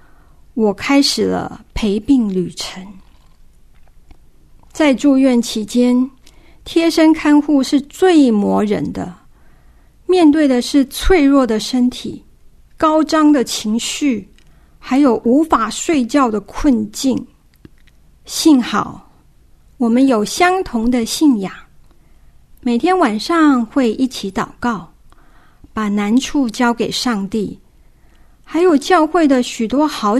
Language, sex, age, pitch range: Chinese, female, 50-69, 215-290 Hz